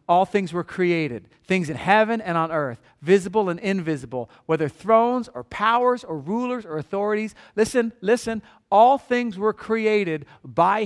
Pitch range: 170-245 Hz